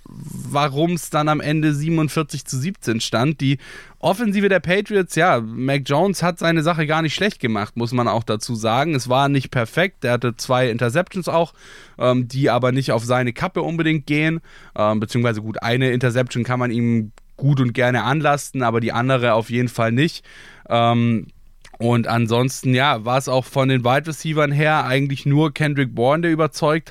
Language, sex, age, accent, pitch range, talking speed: German, male, 10-29, German, 120-150 Hz, 185 wpm